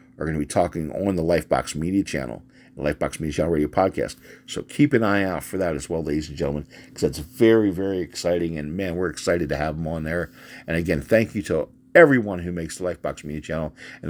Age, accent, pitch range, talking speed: 50-69, American, 75-95 Hz, 235 wpm